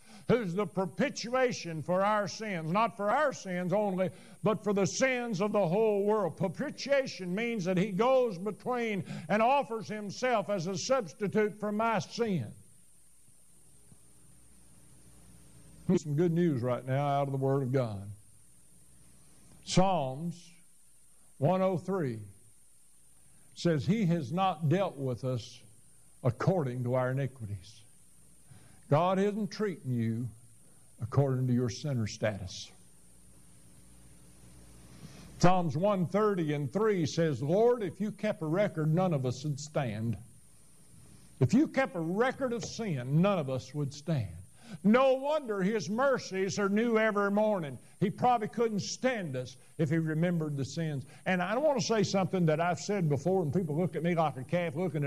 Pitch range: 130-205 Hz